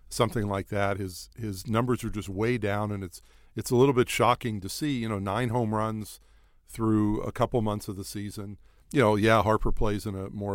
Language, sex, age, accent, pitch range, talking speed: English, male, 50-69, American, 100-120 Hz, 220 wpm